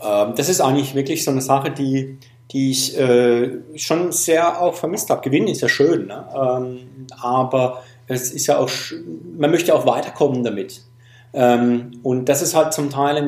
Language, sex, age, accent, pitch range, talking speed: English, male, 40-59, German, 125-150 Hz, 170 wpm